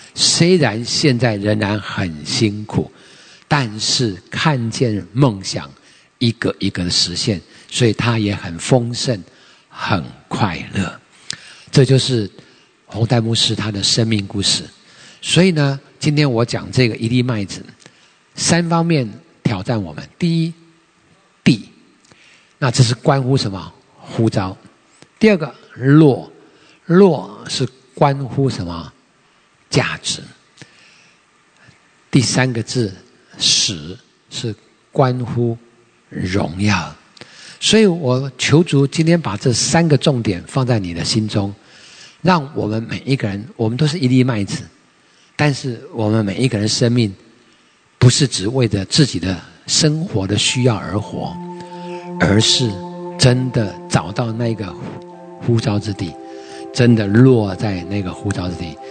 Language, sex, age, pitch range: English, male, 50-69, 105-145 Hz